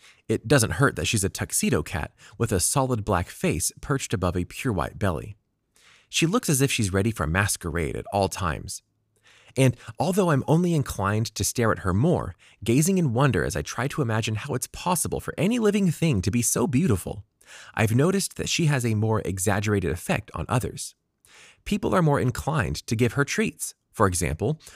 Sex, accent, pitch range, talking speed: male, American, 95-140 Hz, 195 wpm